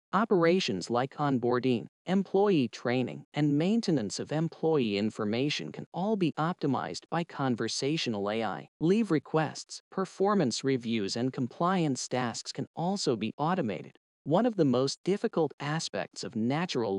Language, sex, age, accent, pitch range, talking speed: English, male, 40-59, American, 120-170 Hz, 125 wpm